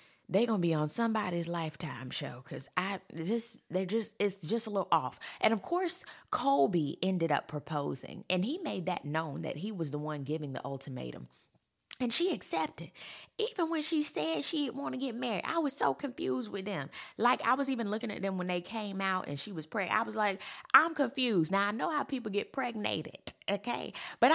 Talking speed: 210 wpm